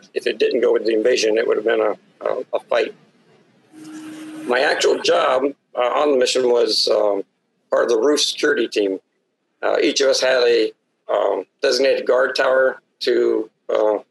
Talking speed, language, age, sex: 175 wpm, English, 50-69, male